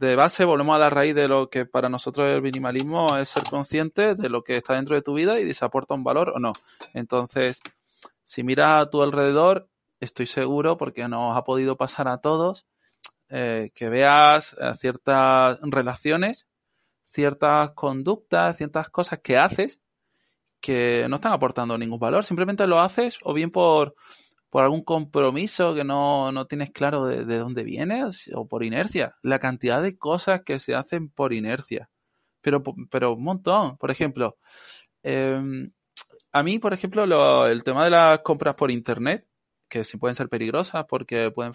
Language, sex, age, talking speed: Spanish, male, 20-39, 170 wpm